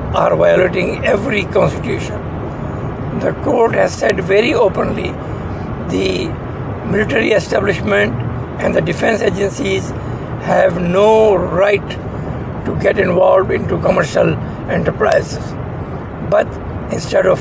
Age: 60-79